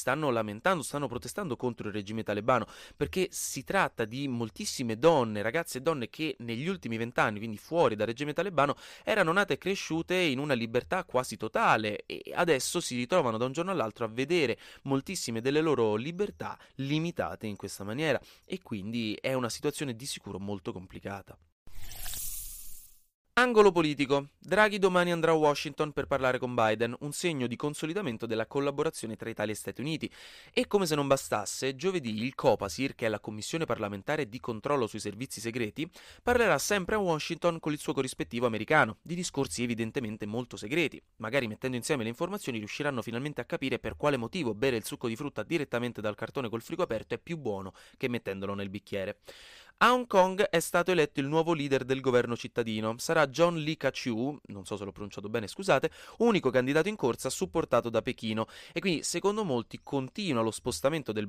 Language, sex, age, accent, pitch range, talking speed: Italian, male, 30-49, native, 110-160 Hz, 180 wpm